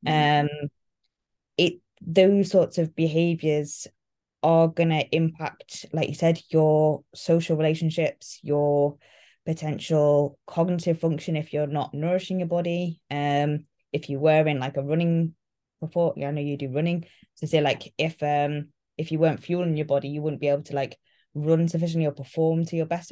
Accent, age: British, 20-39